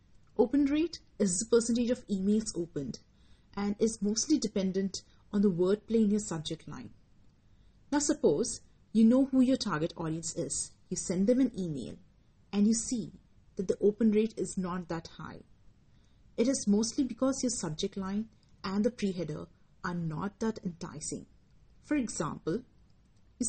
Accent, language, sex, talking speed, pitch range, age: Indian, English, female, 155 wpm, 170-230 Hz, 30-49